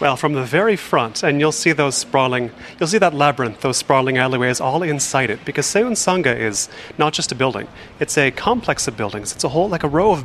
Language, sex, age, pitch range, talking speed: English, male, 30-49, 120-155 Hz, 235 wpm